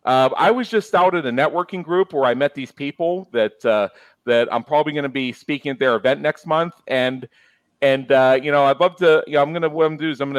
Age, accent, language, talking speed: 40-59, American, English, 285 wpm